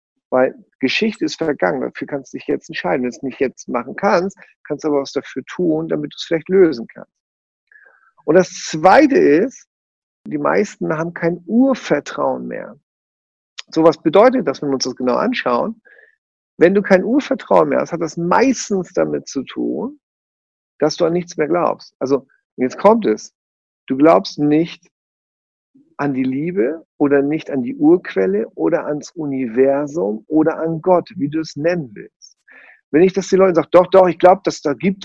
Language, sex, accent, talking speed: German, male, German, 180 wpm